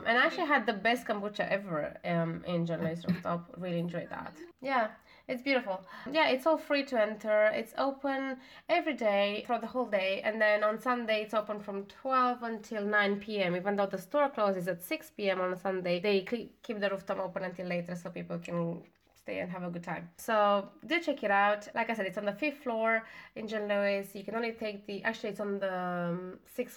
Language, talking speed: English, 215 wpm